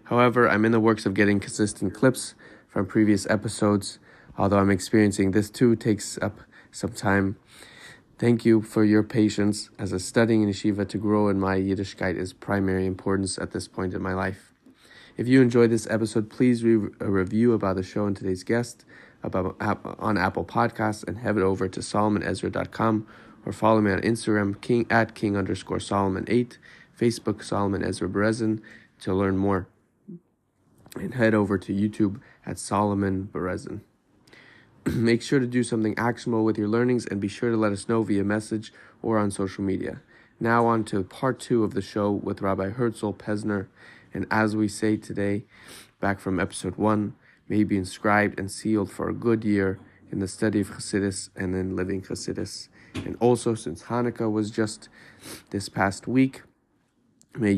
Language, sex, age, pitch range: English, male, 20-39, 95-115 Hz